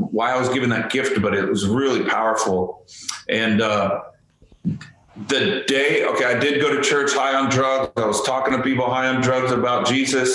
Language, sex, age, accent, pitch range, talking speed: English, male, 40-59, American, 110-135 Hz, 195 wpm